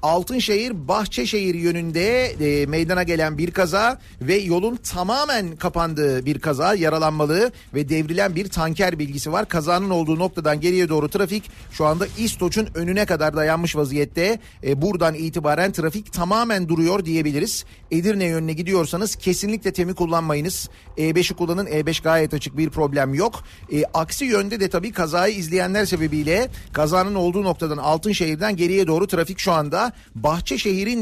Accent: native